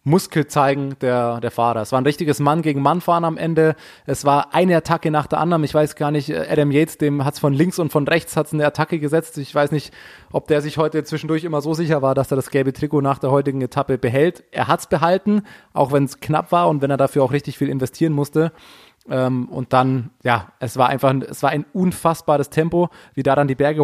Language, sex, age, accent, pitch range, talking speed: German, male, 20-39, German, 135-155 Hz, 245 wpm